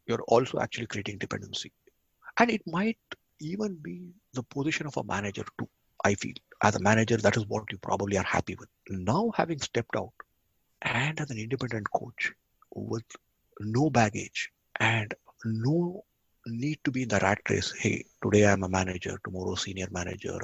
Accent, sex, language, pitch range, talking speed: Indian, male, English, 105-155 Hz, 170 wpm